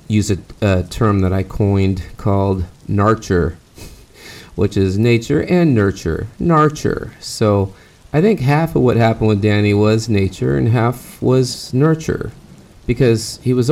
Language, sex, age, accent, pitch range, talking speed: English, male, 30-49, American, 100-135 Hz, 145 wpm